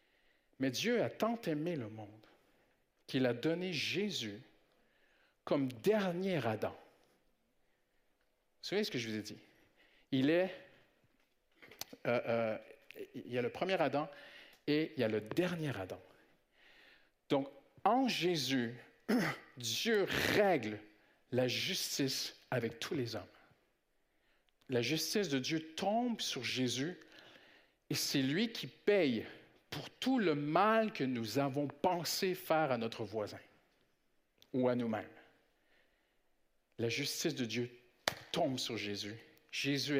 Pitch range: 115-165 Hz